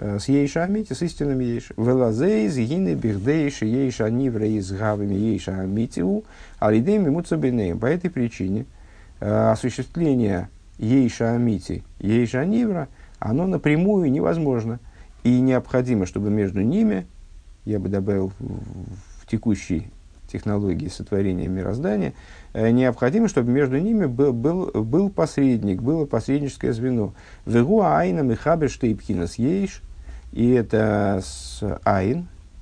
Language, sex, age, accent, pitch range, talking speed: Russian, male, 50-69, native, 95-135 Hz, 120 wpm